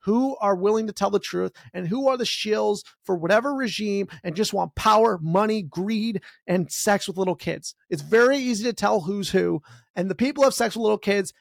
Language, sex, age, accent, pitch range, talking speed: English, male, 30-49, American, 180-225 Hz, 215 wpm